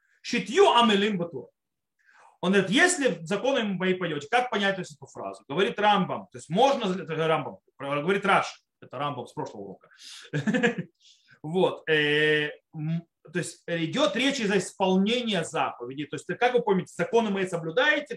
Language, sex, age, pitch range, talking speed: Russian, male, 30-49, 165-240 Hz, 130 wpm